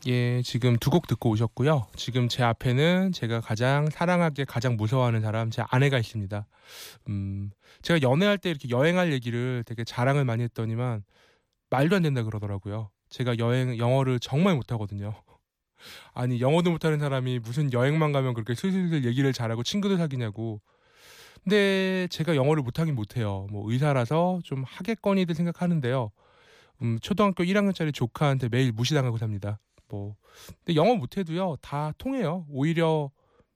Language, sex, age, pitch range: Korean, male, 20-39, 120-175 Hz